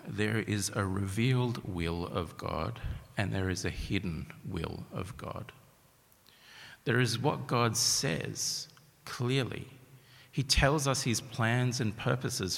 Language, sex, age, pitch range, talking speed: English, male, 50-69, 95-135 Hz, 135 wpm